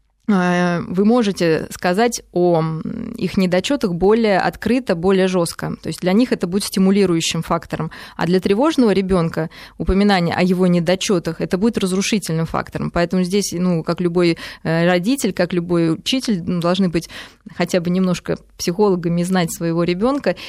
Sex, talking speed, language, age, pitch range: female, 140 wpm, Russian, 20-39, 175-210 Hz